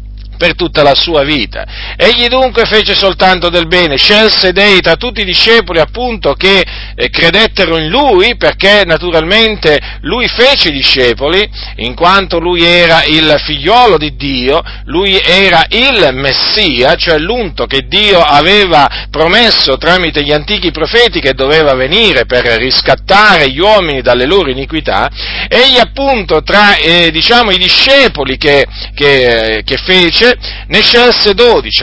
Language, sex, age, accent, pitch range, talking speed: Italian, male, 50-69, native, 140-215 Hz, 140 wpm